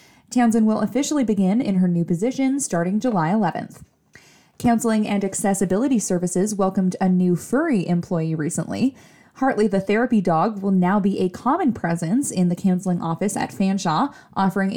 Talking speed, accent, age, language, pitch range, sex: 155 wpm, American, 20-39, English, 180-230 Hz, female